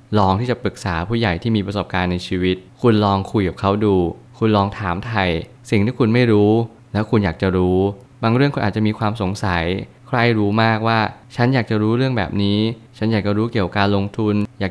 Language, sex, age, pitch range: Thai, male, 20-39, 95-120 Hz